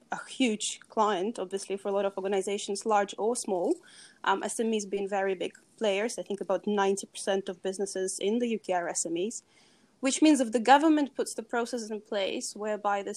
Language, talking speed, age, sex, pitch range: English, 185 wpm, 20-39, female, 200-240 Hz